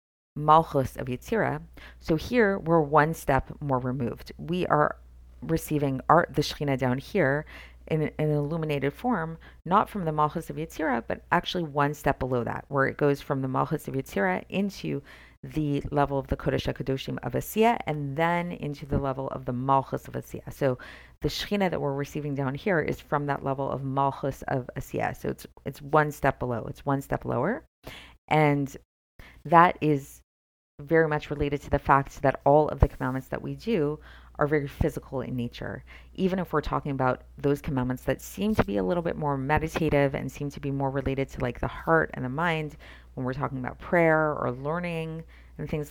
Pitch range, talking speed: 130-155 Hz, 195 wpm